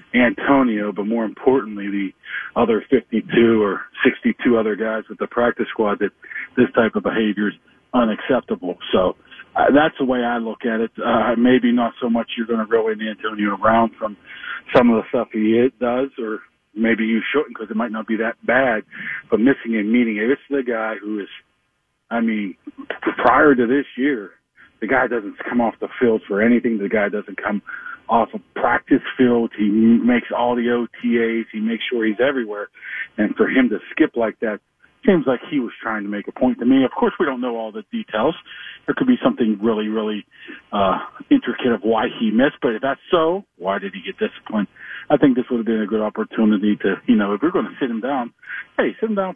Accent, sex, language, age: American, male, English, 50-69